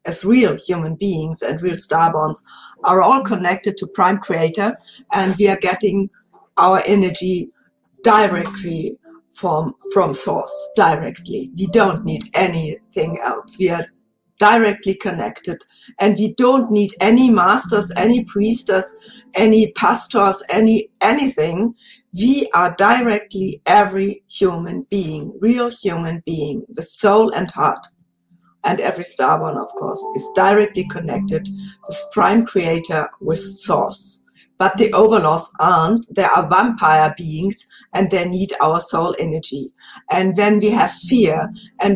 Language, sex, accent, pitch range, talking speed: English, female, German, 180-220 Hz, 135 wpm